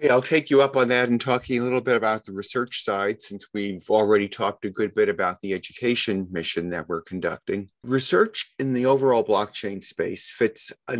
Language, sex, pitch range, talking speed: English, male, 95-120 Hz, 200 wpm